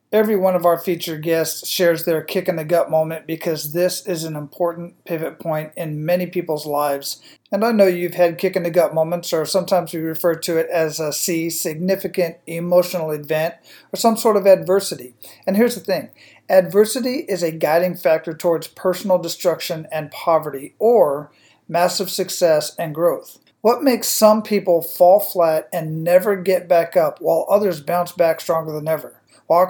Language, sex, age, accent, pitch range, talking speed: English, male, 40-59, American, 165-190 Hz, 170 wpm